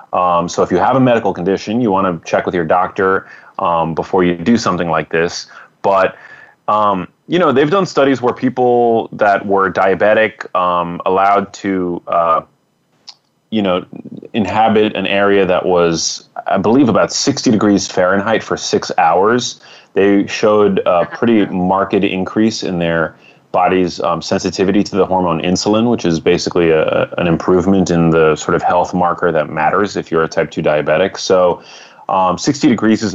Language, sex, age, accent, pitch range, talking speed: English, male, 30-49, American, 85-105 Hz, 170 wpm